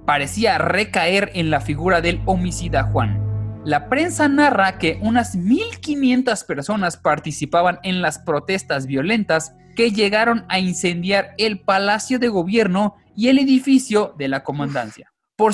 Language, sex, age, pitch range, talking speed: Spanish, male, 20-39, 150-235 Hz, 135 wpm